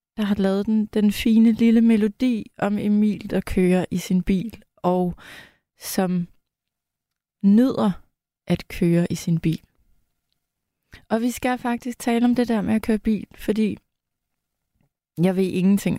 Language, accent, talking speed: Danish, native, 145 wpm